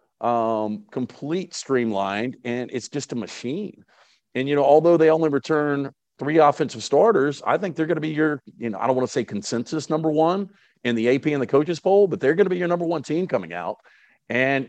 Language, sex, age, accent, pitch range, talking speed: English, male, 50-69, American, 120-155 Hz, 220 wpm